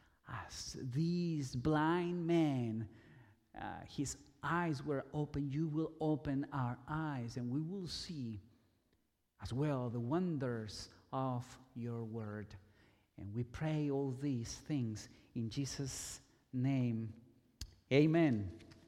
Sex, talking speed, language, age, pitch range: male, 110 wpm, English, 50-69, 130-205 Hz